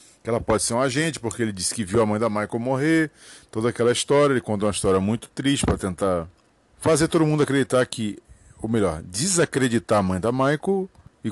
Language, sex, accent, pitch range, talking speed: Portuguese, male, Brazilian, 110-145 Hz, 210 wpm